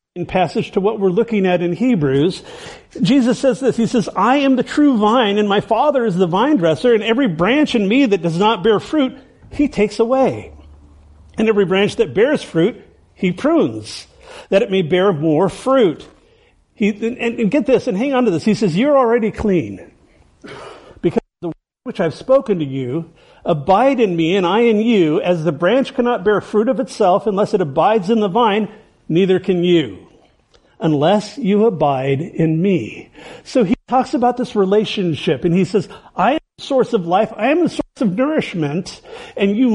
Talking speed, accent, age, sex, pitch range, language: 195 wpm, American, 50-69, male, 190-255 Hz, English